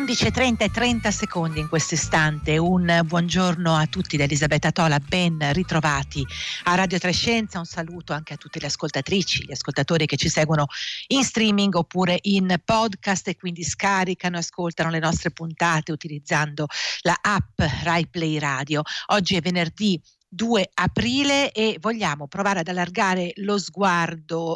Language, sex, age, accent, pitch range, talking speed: Italian, female, 50-69, native, 155-195 Hz, 150 wpm